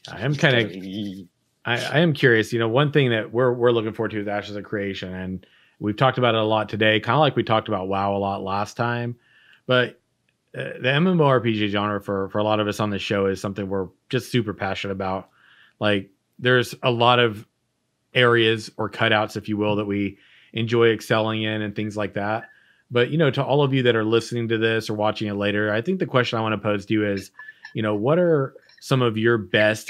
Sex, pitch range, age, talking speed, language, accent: male, 105-120 Hz, 30-49, 235 wpm, English, American